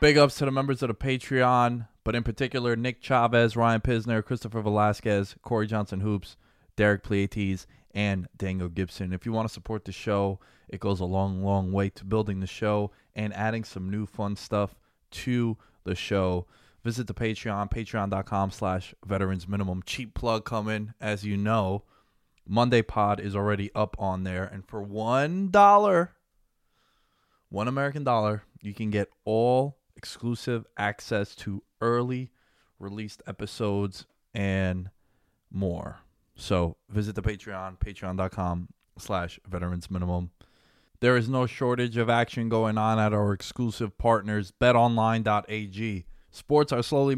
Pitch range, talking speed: 100-120 Hz, 145 wpm